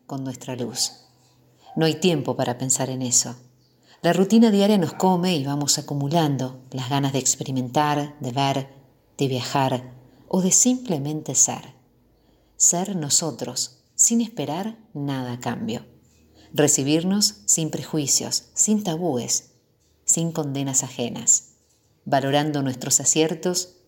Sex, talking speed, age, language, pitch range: female, 120 wpm, 50-69, Spanish, 125-160 Hz